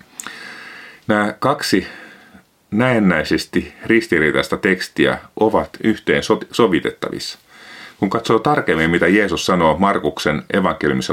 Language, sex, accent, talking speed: Finnish, male, native, 85 wpm